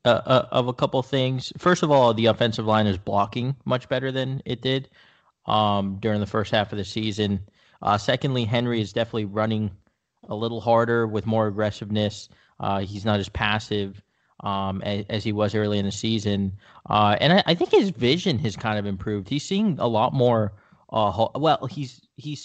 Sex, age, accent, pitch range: male, 20-39, American, 105-125 Hz